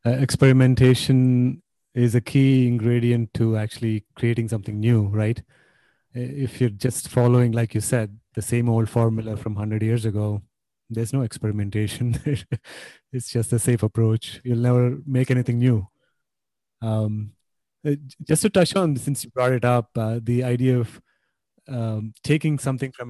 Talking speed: 150 wpm